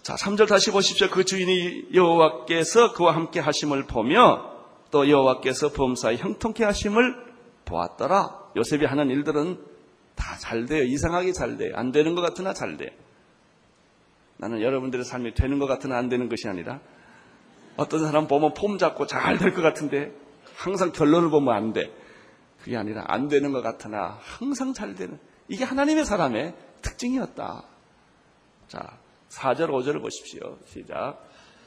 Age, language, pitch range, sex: 30-49, Korean, 120-165 Hz, male